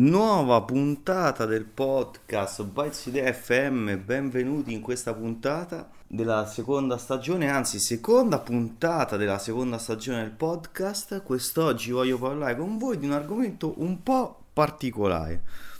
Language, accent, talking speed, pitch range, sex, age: Italian, native, 120 wpm, 110-155 Hz, male, 30-49